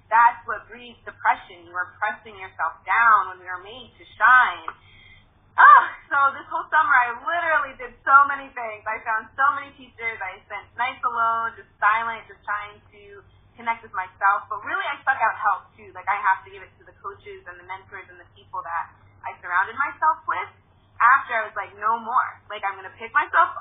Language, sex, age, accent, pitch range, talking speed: English, female, 20-39, American, 195-250 Hz, 215 wpm